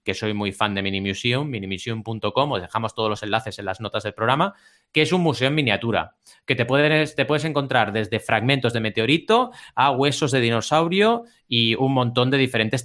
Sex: male